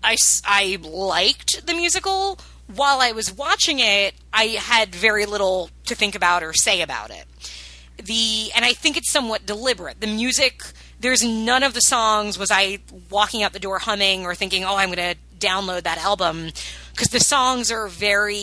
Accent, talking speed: American, 180 wpm